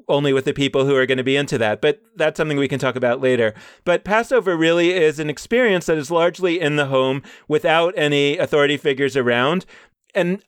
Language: English